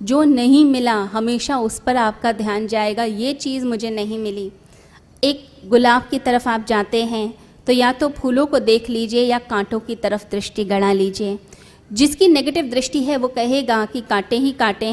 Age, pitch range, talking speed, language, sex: 20-39, 215-275 Hz, 180 wpm, Hindi, female